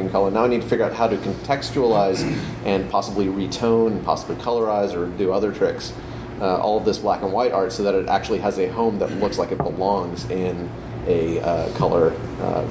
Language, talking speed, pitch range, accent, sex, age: English, 215 wpm, 95-120 Hz, American, male, 30-49